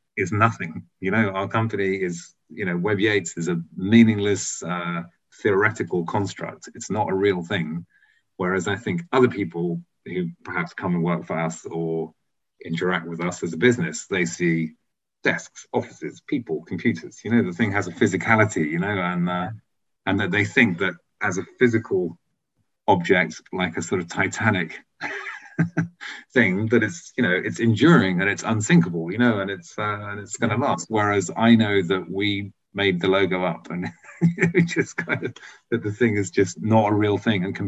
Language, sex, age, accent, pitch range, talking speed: English, male, 30-49, British, 85-110 Hz, 185 wpm